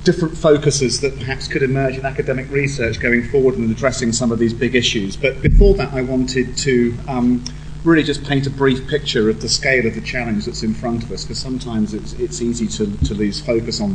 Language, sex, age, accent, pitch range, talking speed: English, male, 40-59, British, 110-145 Hz, 225 wpm